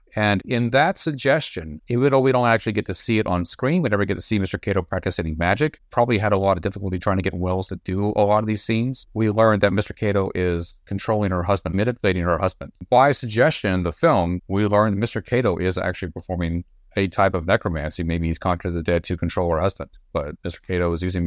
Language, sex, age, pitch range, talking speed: English, male, 30-49, 85-105 Hz, 235 wpm